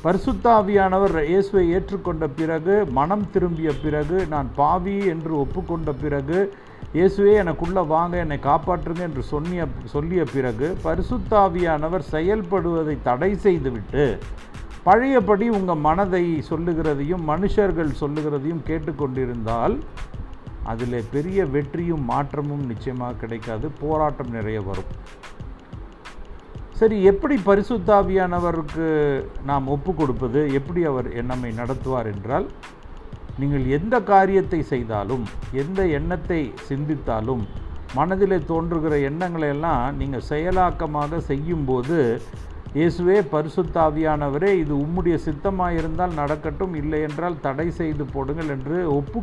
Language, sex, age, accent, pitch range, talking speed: Tamil, male, 50-69, native, 135-180 Hz, 60 wpm